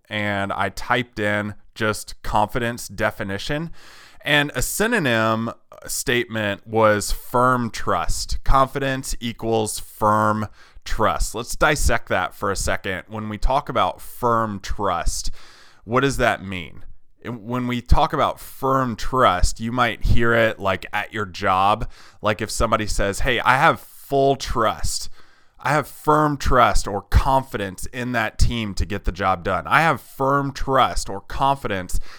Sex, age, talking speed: male, 20-39, 145 wpm